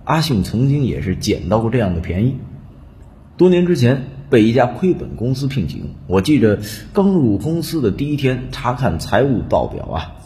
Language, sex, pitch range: Chinese, male, 90-140 Hz